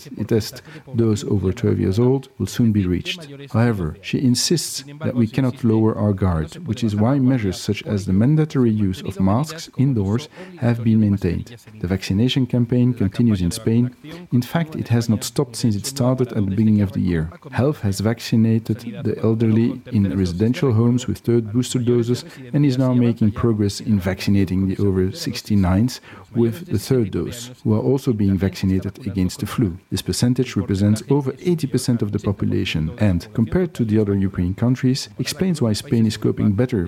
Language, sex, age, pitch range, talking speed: English, male, 40-59, 100-125 Hz, 180 wpm